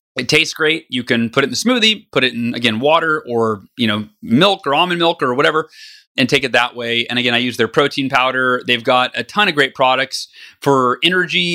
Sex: male